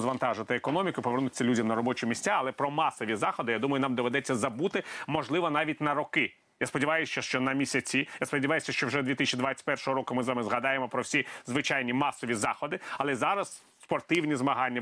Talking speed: 180 wpm